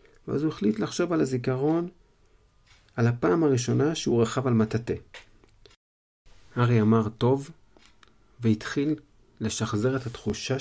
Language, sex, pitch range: Hebrew, male, 105-135 Hz